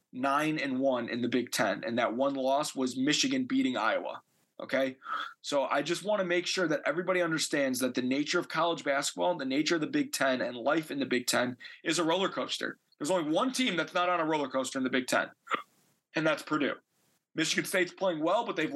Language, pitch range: English, 145-190 Hz